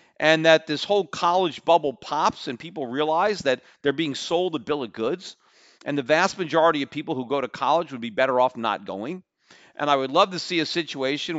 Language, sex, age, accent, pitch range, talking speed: English, male, 40-59, American, 125-160 Hz, 220 wpm